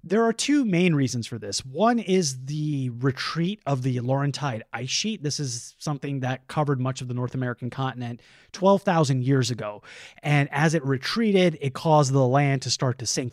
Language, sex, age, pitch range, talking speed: English, male, 30-49, 125-155 Hz, 190 wpm